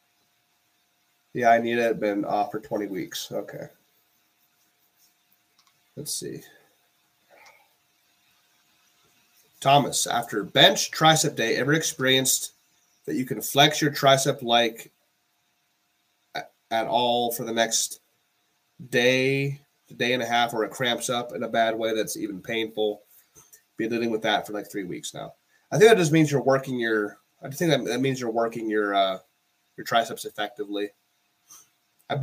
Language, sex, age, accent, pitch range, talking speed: English, male, 30-49, American, 110-150 Hz, 145 wpm